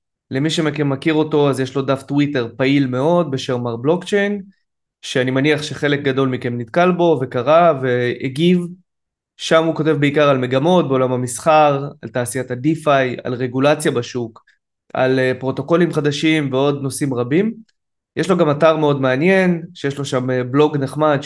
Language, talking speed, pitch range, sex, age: Hebrew, 150 wpm, 130-160 Hz, male, 20-39